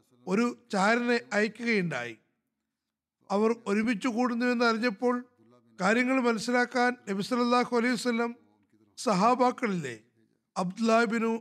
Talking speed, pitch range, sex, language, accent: 70 wpm, 165-245 Hz, male, Malayalam, native